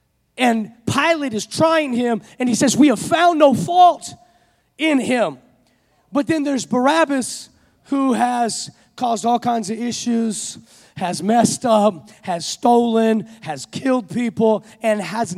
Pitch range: 220-270 Hz